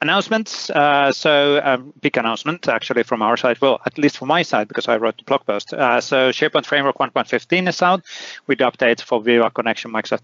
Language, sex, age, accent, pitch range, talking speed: English, male, 30-49, Finnish, 115-150 Hz, 210 wpm